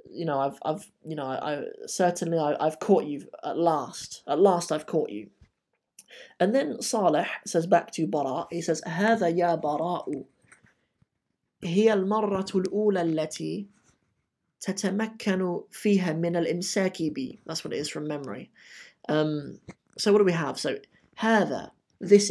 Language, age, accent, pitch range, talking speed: English, 20-39, British, 155-195 Hz, 130 wpm